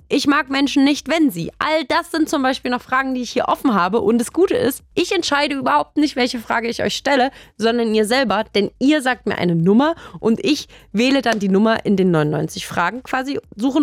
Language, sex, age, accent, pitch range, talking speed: German, female, 20-39, German, 195-270 Hz, 225 wpm